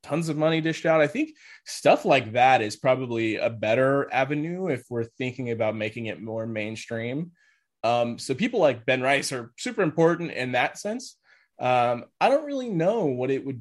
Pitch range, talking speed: 120-150 Hz, 190 wpm